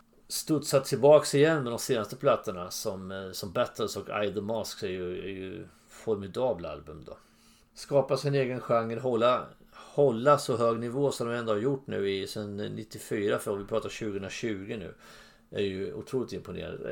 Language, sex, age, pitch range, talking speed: English, male, 30-49, 100-140 Hz, 165 wpm